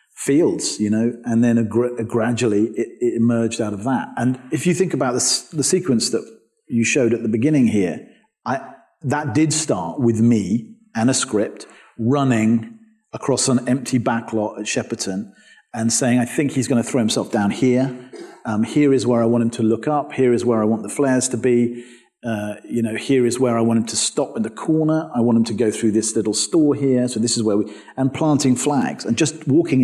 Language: English